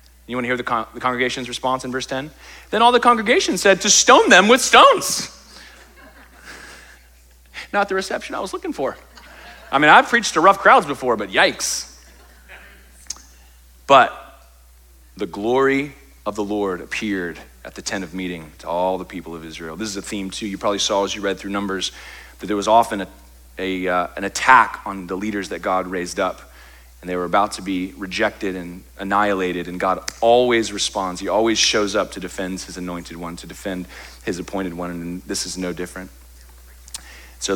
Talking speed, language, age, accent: 190 wpm, English, 30-49, American